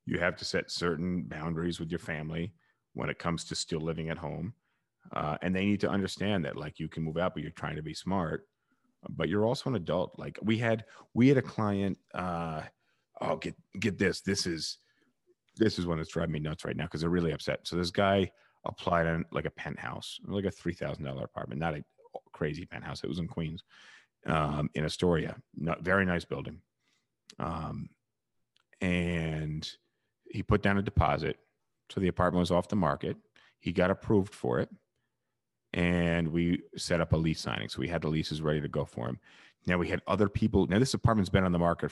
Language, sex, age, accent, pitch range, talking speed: English, male, 30-49, American, 80-95 Hz, 205 wpm